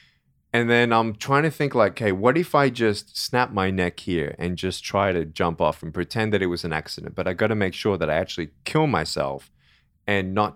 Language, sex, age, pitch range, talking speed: English, male, 20-39, 80-100 Hz, 240 wpm